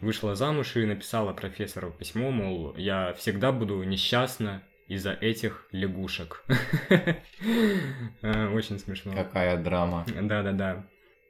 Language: Russian